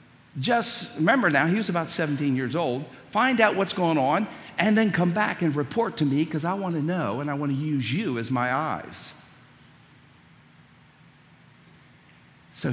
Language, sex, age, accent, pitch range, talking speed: English, male, 60-79, American, 130-180 Hz, 175 wpm